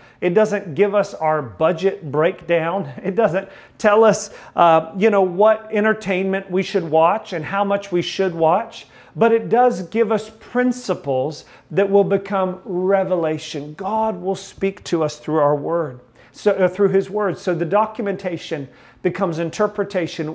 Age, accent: 40-59, American